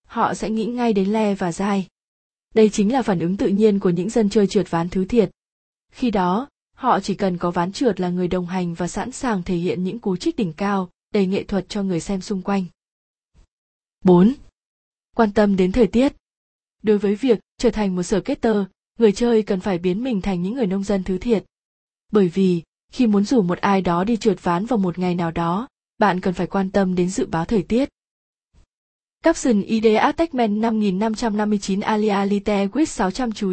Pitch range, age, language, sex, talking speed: 185-225 Hz, 20-39, Vietnamese, female, 205 wpm